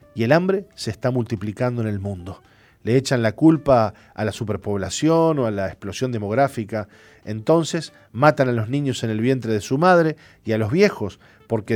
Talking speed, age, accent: 190 wpm, 40-59, Argentinian